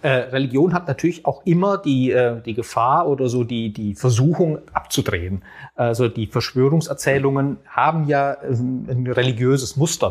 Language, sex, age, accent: German, male, 40-59, German